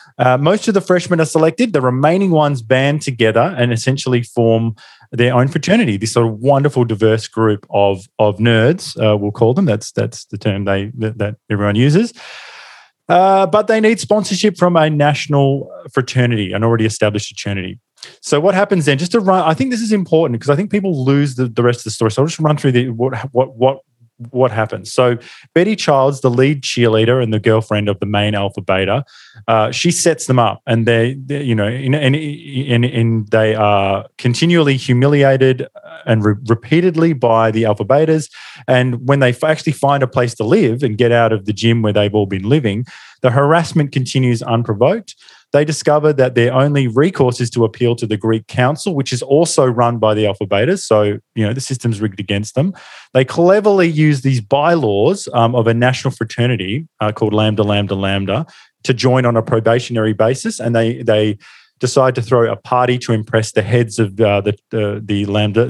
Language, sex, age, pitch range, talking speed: English, male, 20-39, 110-145 Hz, 200 wpm